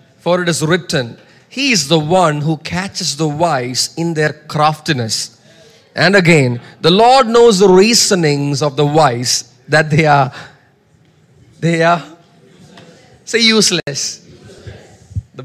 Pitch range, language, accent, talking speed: 135-185 Hz, English, Indian, 130 wpm